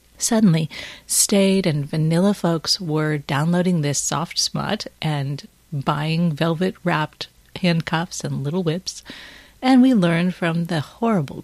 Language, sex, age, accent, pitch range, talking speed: English, female, 40-59, American, 150-190 Hz, 120 wpm